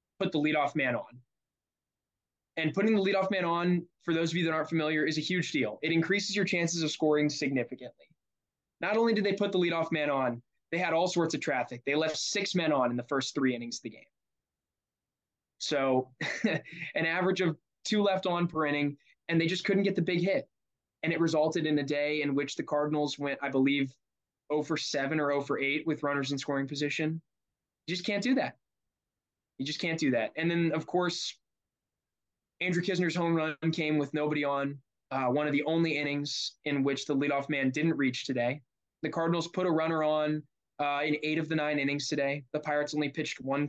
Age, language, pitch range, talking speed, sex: 20-39, English, 140-165 Hz, 210 wpm, male